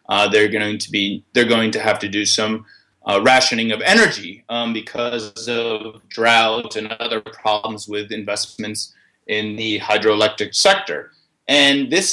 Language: English